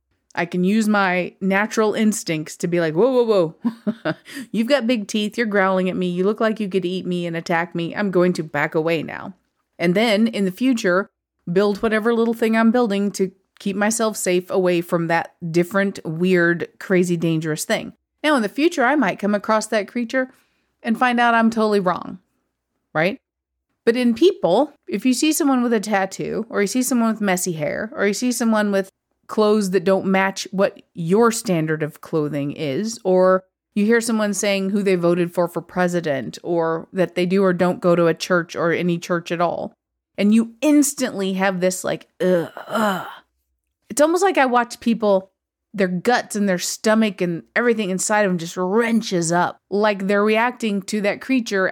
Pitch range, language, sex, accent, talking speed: 175-220 Hz, English, female, American, 195 wpm